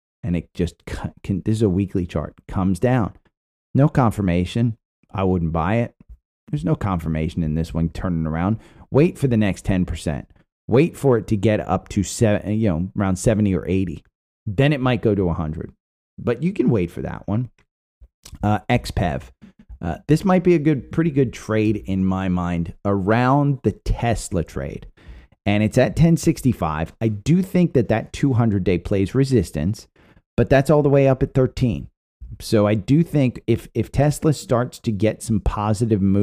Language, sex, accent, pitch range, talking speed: English, male, American, 90-125 Hz, 175 wpm